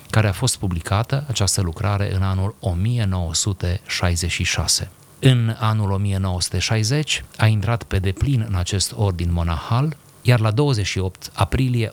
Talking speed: 120 wpm